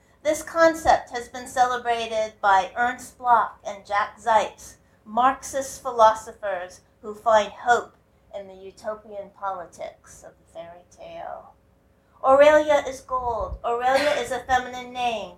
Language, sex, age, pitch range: English, female, 40-59, 195-255 Hz